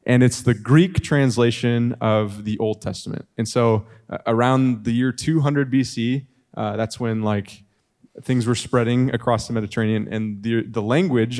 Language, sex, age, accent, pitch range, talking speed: English, male, 20-39, American, 110-130 Hz, 165 wpm